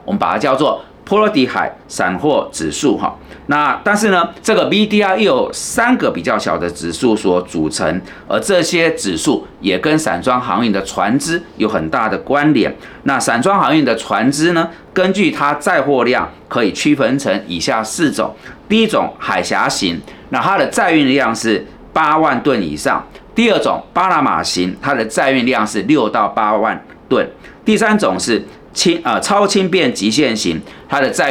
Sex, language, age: male, Chinese, 40-59